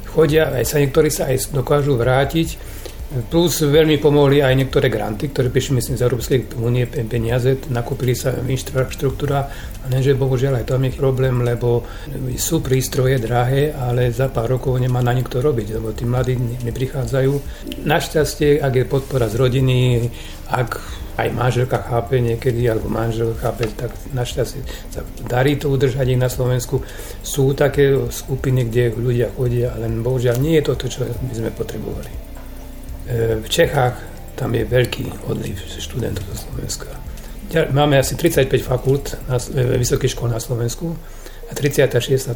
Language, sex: Slovak, male